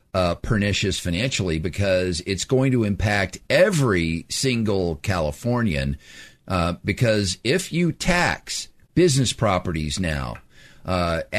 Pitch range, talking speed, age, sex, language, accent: 90-125 Hz, 105 wpm, 50-69, male, English, American